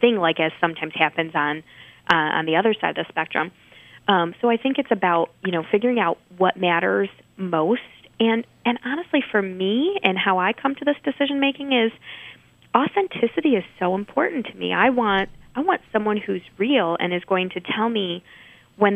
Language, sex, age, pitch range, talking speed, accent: English, female, 20-39, 170-230 Hz, 195 wpm, American